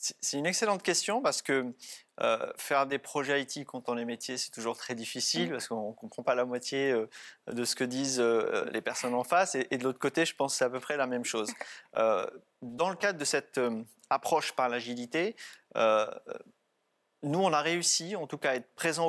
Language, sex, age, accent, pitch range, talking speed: French, male, 30-49, French, 125-160 Hz, 230 wpm